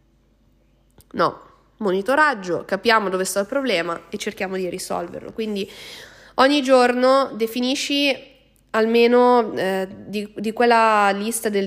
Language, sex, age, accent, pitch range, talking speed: Italian, female, 20-39, native, 190-235 Hz, 115 wpm